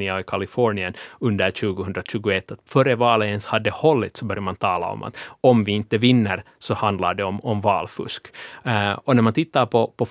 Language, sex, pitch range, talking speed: Swedish, male, 100-125 Hz, 195 wpm